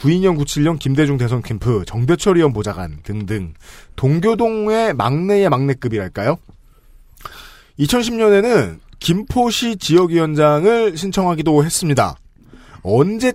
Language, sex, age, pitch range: Korean, male, 40-59, 125-205 Hz